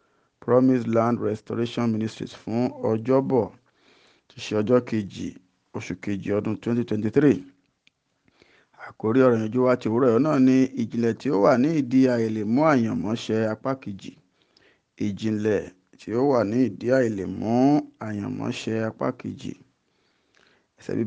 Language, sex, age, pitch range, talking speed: English, male, 50-69, 110-130 Hz, 115 wpm